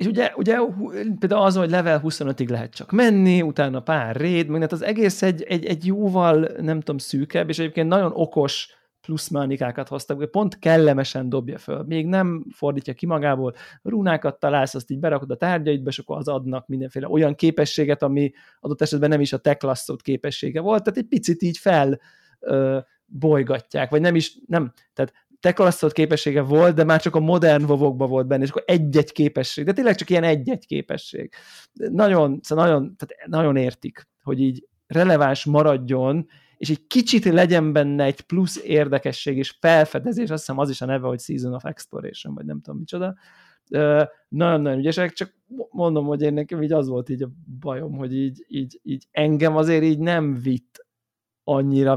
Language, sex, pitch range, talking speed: Hungarian, male, 140-180 Hz, 175 wpm